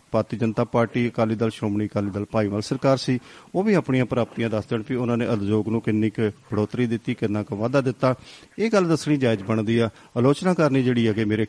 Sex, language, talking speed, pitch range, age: male, Punjabi, 210 wpm, 110-125 Hz, 50-69